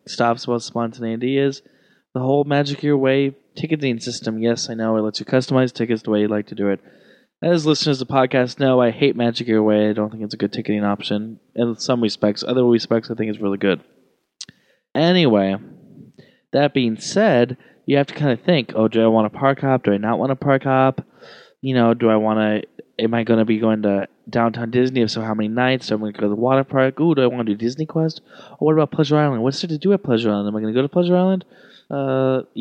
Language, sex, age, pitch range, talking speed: English, male, 20-39, 110-135 Hz, 250 wpm